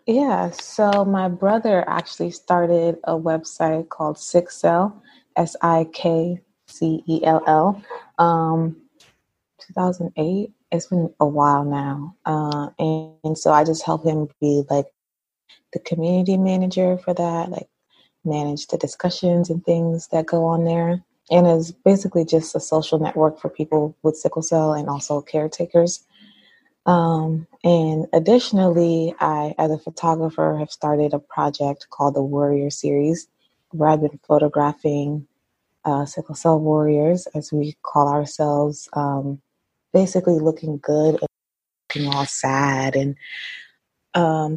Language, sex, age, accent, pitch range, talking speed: English, female, 20-39, American, 150-175 Hz, 140 wpm